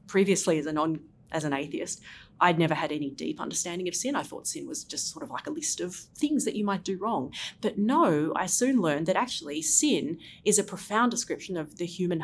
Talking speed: 220 wpm